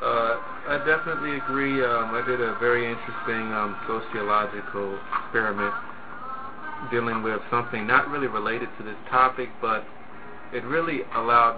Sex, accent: male, American